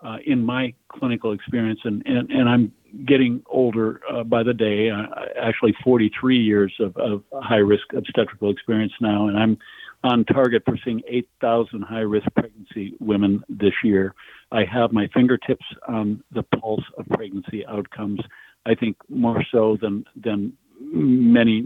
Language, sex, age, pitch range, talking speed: English, male, 60-79, 100-115 Hz, 150 wpm